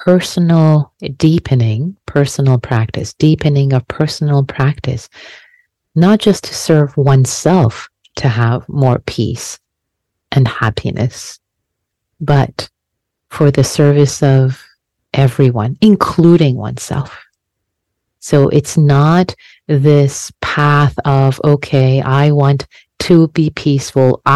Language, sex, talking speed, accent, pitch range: English, female, 95 wpm, American, 135-160 Hz